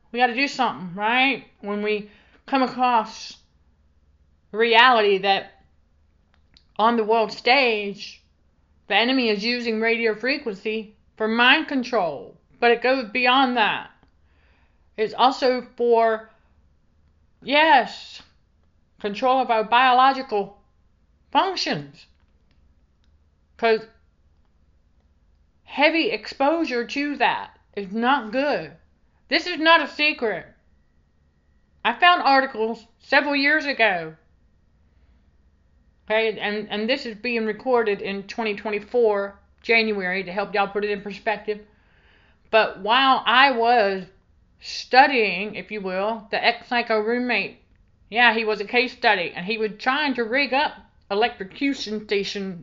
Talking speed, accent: 115 wpm, American